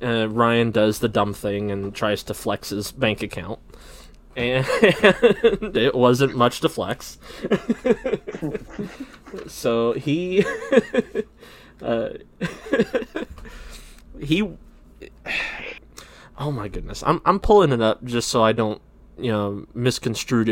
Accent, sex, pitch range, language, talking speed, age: American, male, 100-125 Hz, English, 115 wpm, 20-39